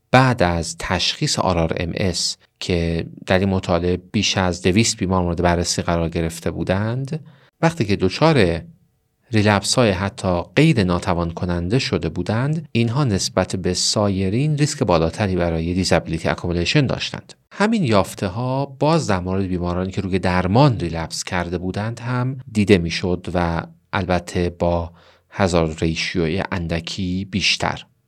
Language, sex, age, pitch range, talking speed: Persian, male, 40-59, 85-115 Hz, 125 wpm